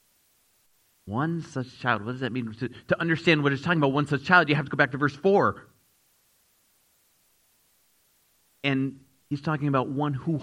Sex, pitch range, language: male, 120-160 Hz, English